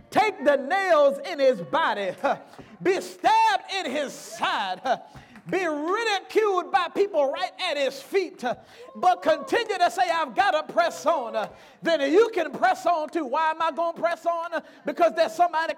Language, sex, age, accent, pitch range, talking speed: English, male, 40-59, American, 310-365 Hz, 165 wpm